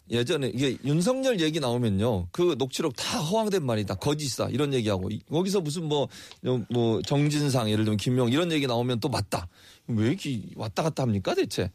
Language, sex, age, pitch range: Korean, male, 30-49, 125-180 Hz